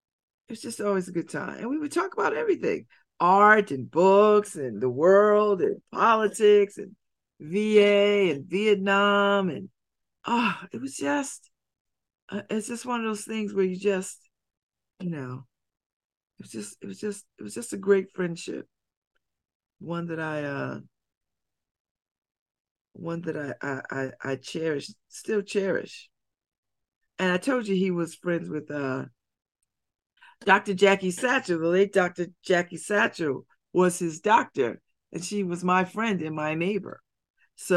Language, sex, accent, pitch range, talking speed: English, female, American, 155-205 Hz, 150 wpm